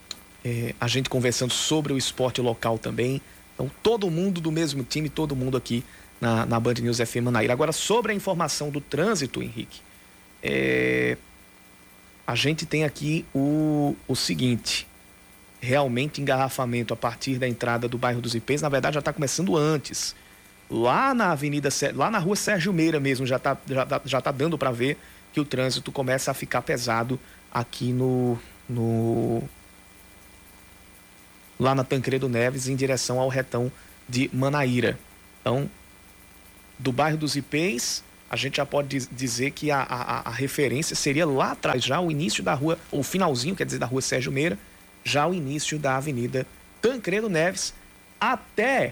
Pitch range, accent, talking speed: 125-160 Hz, Brazilian, 160 wpm